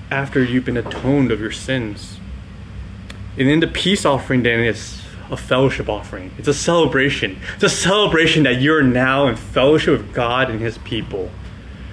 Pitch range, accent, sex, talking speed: 100-165 Hz, American, male, 165 wpm